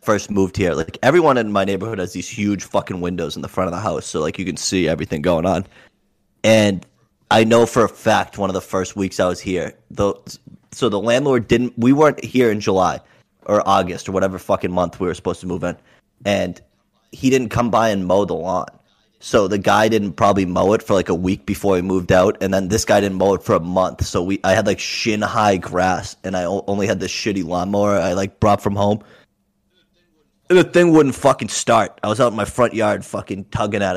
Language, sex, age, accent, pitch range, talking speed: English, male, 20-39, American, 95-110 Hz, 235 wpm